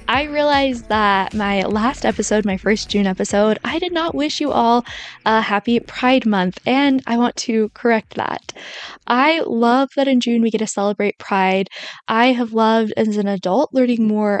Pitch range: 200-245 Hz